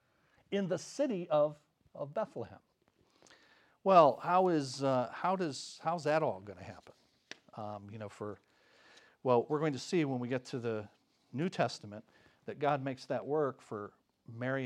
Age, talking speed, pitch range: 50-69, 165 wpm, 115-155 Hz